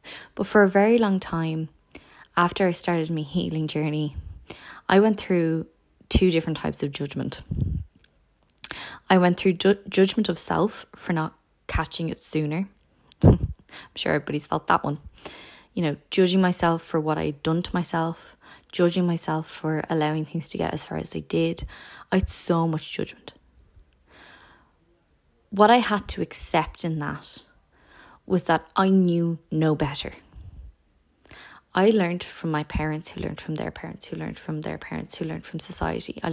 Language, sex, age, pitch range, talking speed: English, female, 20-39, 150-180 Hz, 160 wpm